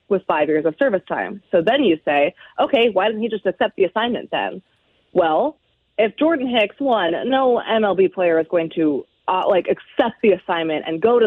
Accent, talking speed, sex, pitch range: American, 200 wpm, female, 170-230 Hz